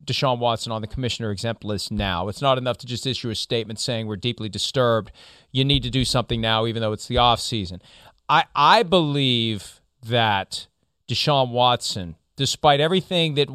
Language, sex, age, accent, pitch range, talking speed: English, male, 40-59, American, 120-150 Hz, 180 wpm